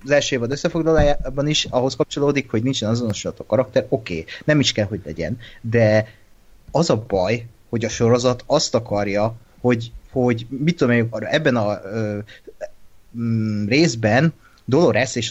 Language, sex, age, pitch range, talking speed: Hungarian, male, 30-49, 110-140 Hz, 155 wpm